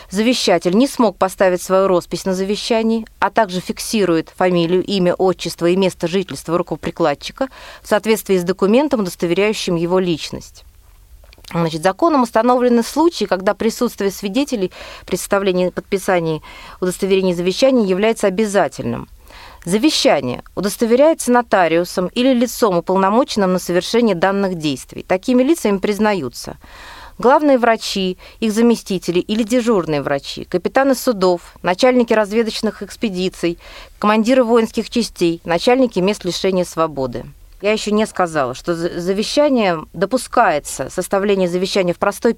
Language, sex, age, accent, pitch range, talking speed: Russian, female, 30-49, native, 175-225 Hz, 115 wpm